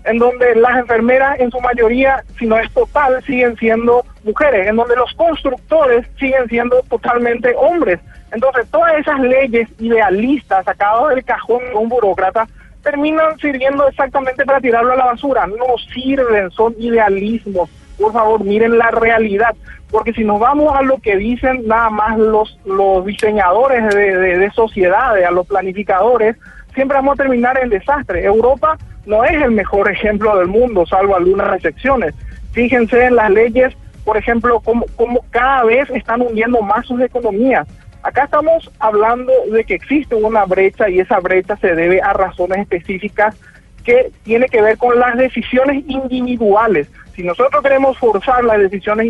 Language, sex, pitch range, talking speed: Spanish, male, 210-260 Hz, 160 wpm